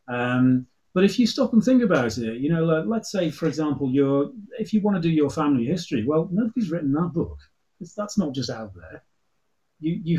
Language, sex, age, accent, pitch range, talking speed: English, male, 30-49, British, 120-175 Hz, 225 wpm